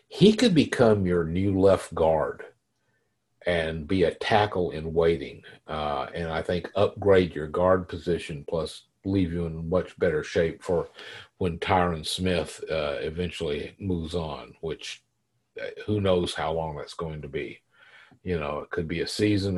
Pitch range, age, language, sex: 85-105 Hz, 50-69, English, male